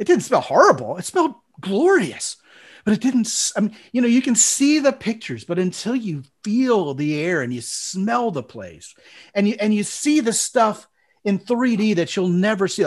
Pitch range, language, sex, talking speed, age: 140-215 Hz, English, male, 200 wpm, 40-59